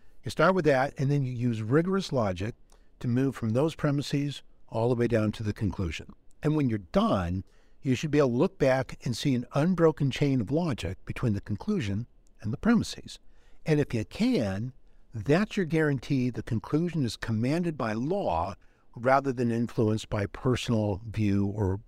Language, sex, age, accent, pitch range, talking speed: English, male, 60-79, American, 110-150 Hz, 180 wpm